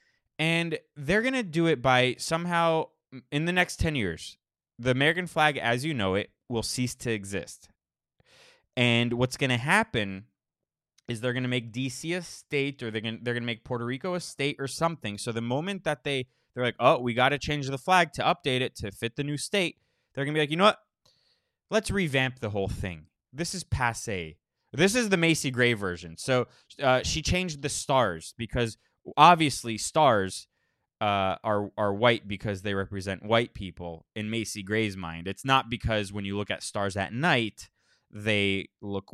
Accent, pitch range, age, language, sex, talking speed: American, 100-145 Hz, 20-39, English, male, 190 wpm